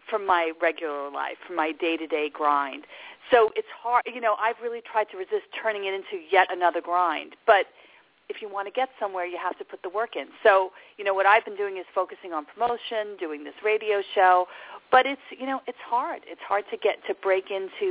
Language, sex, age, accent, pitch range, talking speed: English, female, 40-59, American, 175-240 Hz, 220 wpm